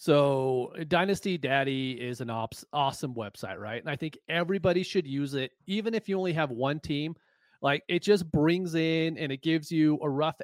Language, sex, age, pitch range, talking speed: English, male, 30-49, 130-185 Hz, 190 wpm